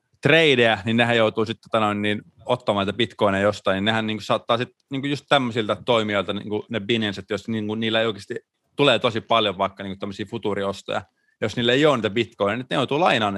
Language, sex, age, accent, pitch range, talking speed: Finnish, male, 30-49, native, 105-130 Hz, 215 wpm